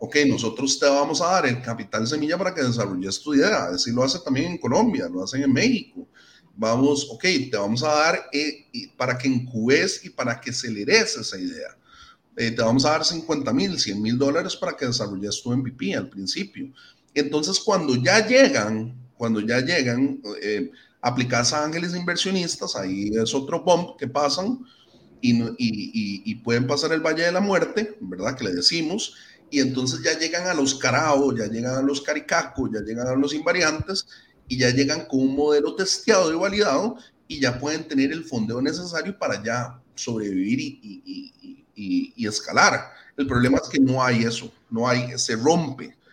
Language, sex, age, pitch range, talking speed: English, male, 30-49, 125-180 Hz, 185 wpm